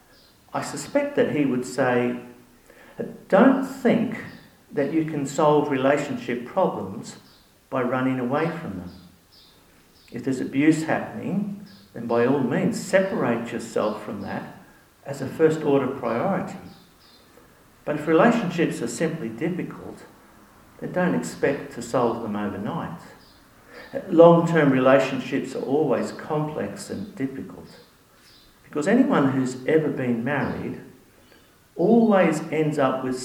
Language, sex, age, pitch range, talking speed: English, male, 50-69, 130-180 Hz, 115 wpm